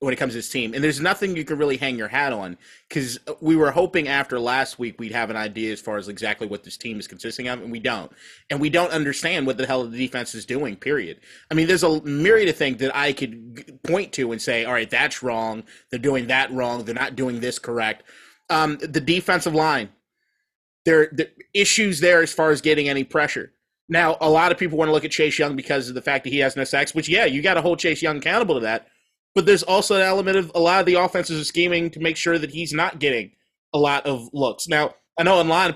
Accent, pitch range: American, 135-175 Hz